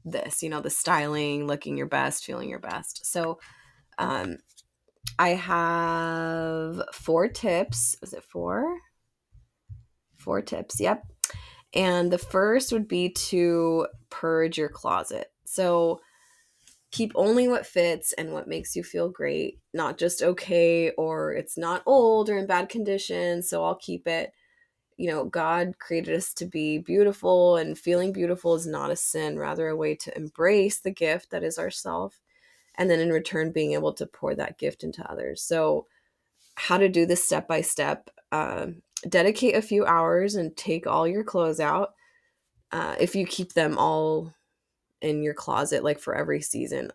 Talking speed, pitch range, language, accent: 160 wpm, 160-195 Hz, English, American